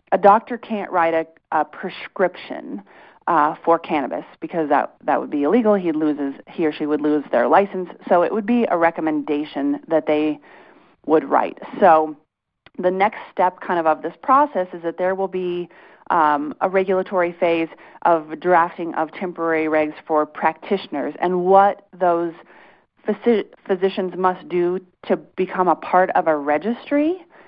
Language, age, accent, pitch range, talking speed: English, 30-49, American, 160-190 Hz, 160 wpm